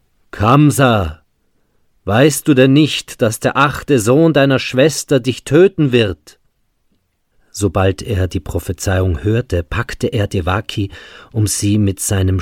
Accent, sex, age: German, male, 40-59